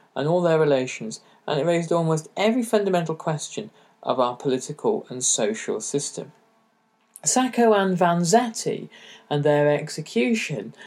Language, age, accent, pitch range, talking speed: English, 40-59, British, 125-175 Hz, 125 wpm